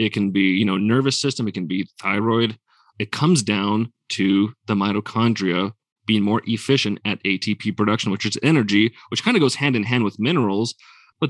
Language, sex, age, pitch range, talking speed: English, male, 30-49, 105-125 Hz, 190 wpm